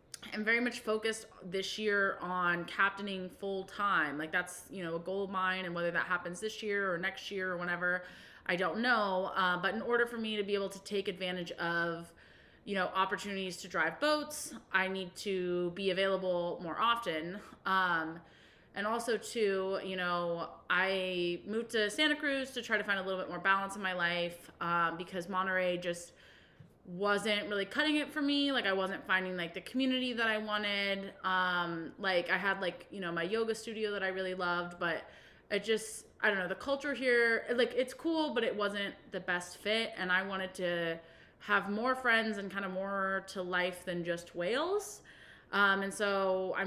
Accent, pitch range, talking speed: American, 180-215 Hz, 195 wpm